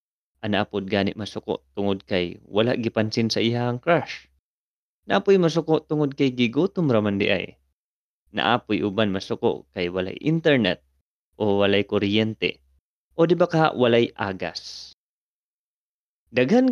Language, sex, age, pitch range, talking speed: English, male, 20-39, 95-140 Hz, 120 wpm